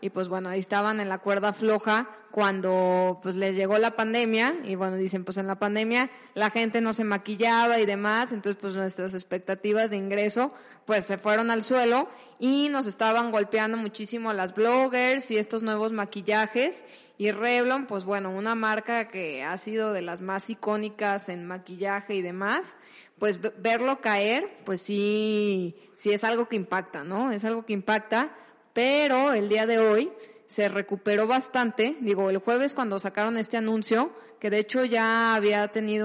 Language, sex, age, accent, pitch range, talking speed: Spanish, female, 20-39, Mexican, 200-230 Hz, 175 wpm